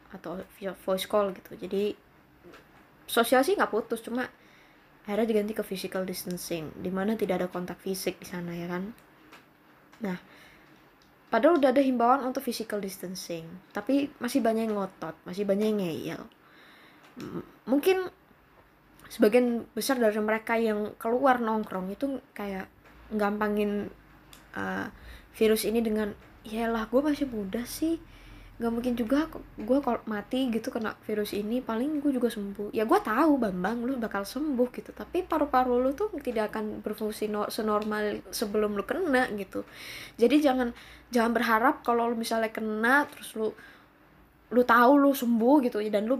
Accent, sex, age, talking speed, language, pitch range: native, female, 20-39, 145 wpm, Indonesian, 210-255 Hz